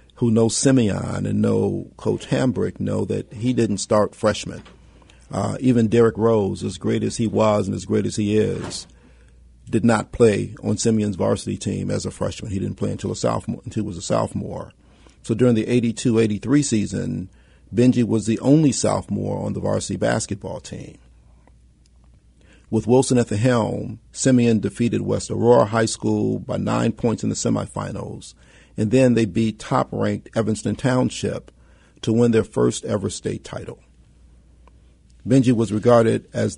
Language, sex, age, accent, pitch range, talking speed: English, male, 50-69, American, 95-115 Hz, 165 wpm